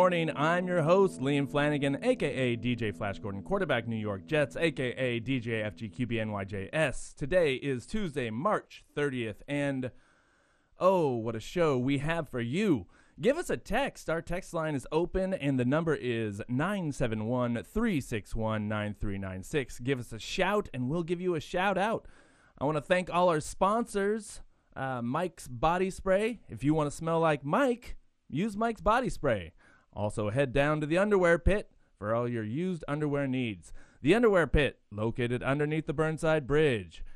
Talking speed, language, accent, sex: 160 wpm, English, American, male